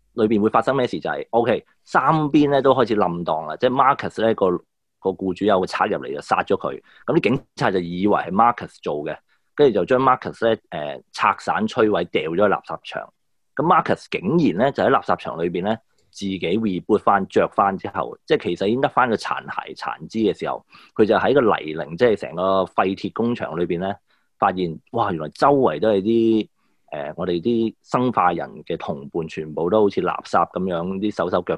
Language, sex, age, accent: Chinese, male, 30-49, native